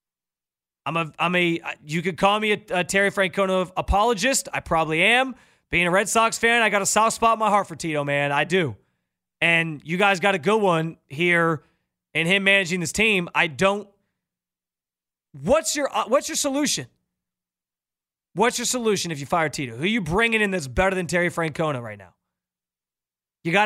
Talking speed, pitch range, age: 190 wpm, 155-225 Hz, 30-49